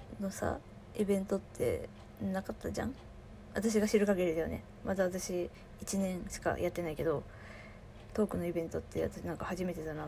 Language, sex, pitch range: Japanese, female, 175-265 Hz